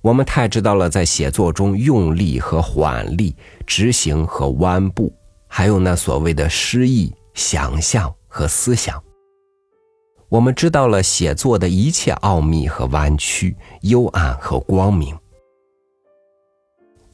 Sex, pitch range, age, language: male, 80-130 Hz, 50-69, Chinese